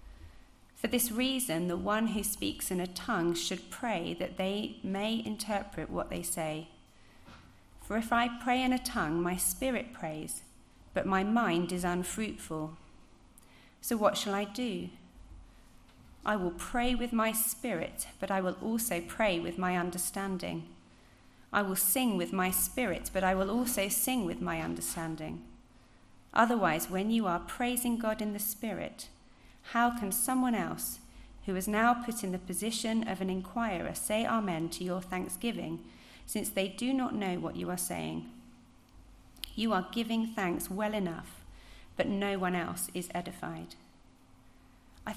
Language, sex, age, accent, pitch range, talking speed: English, female, 40-59, British, 160-225 Hz, 155 wpm